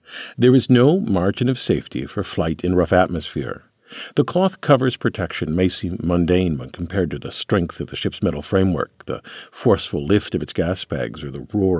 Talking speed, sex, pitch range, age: 195 wpm, male, 90-125 Hz, 50-69